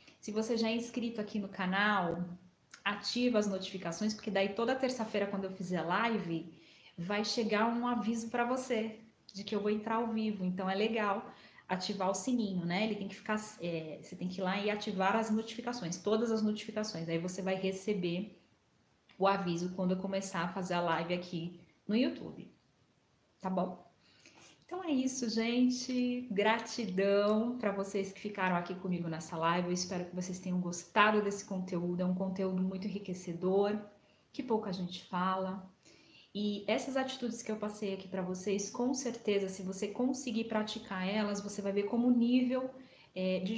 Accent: Brazilian